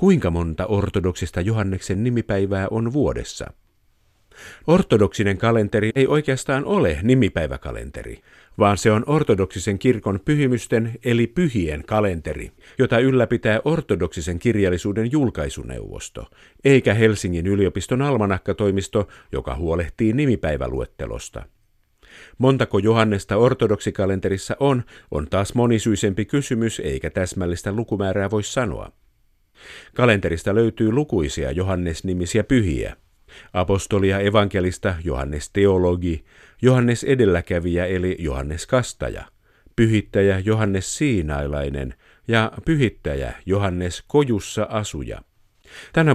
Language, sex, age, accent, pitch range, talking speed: Finnish, male, 50-69, native, 90-120 Hz, 90 wpm